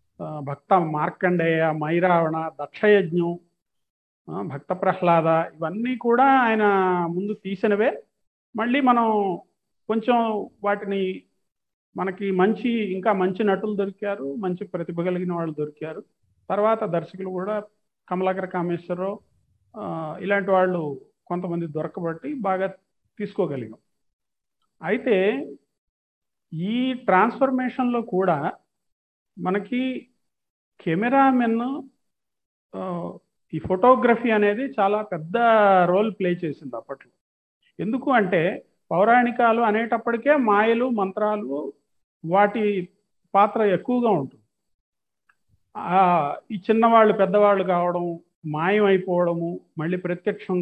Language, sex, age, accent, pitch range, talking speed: Telugu, male, 50-69, native, 175-220 Hz, 85 wpm